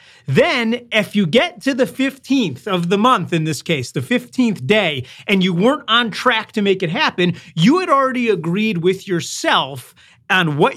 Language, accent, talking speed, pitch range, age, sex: English, American, 185 wpm, 165-225 Hz, 30-49, male